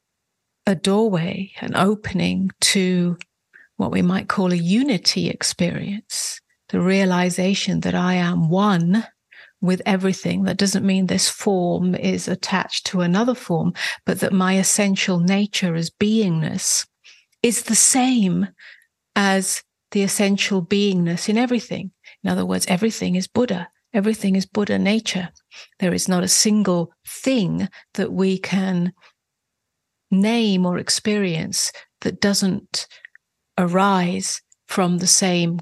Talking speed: 125 wpm